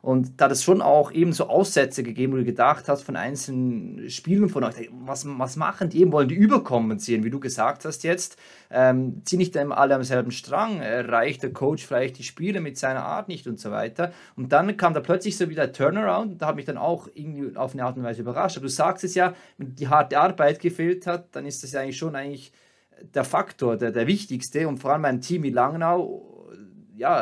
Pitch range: 125-170 Hz